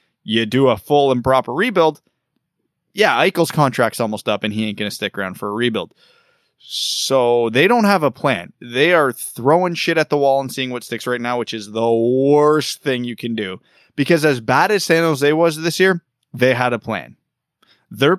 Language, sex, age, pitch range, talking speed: English, male, 20-39, 115-155 Hz, 210 wpm